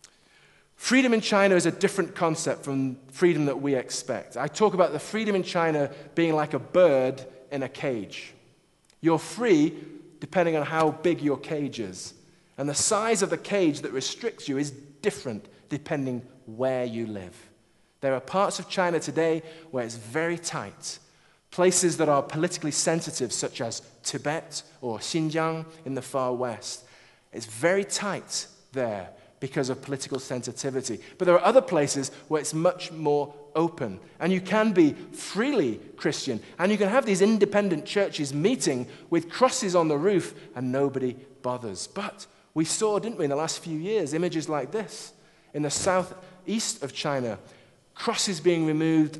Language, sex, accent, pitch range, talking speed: English, male, British, 135-185 Hz, 165 wpm